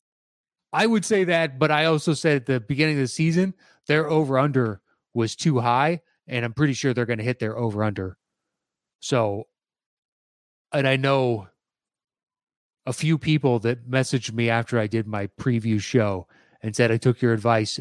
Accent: American